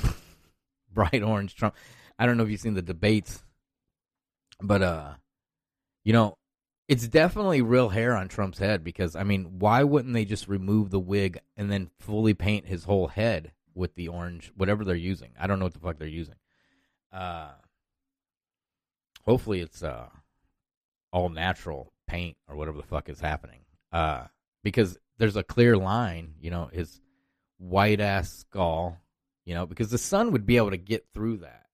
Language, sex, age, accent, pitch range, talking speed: English, male, 30-49, American, 90-115 Hz, 170 wpm